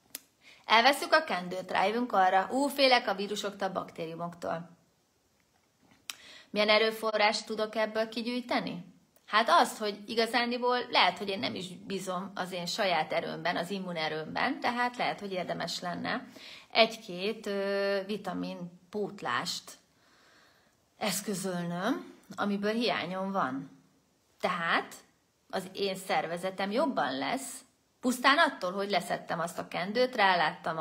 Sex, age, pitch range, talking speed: female, 30-49, 180-235 Hz, 110 wpm